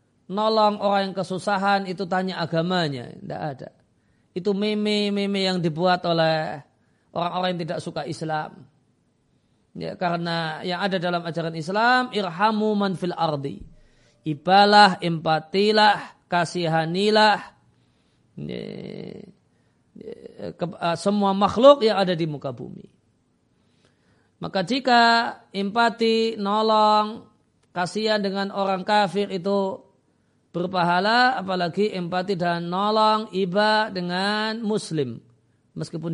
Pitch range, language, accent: 170-215 Hz, Indonesian, native